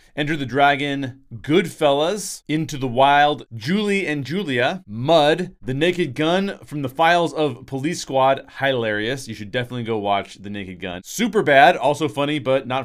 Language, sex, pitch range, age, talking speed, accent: English, male, 115-155 Hz, 30-49, 165 wpm, American